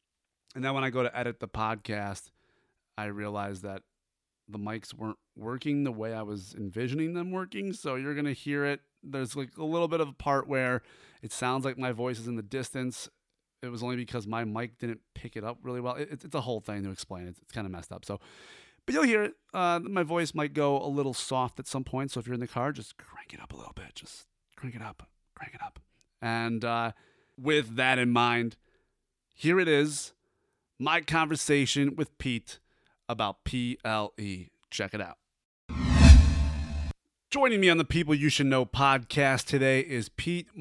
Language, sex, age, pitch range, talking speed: English, male, 30-49, 110-145 Hz, 205 wpm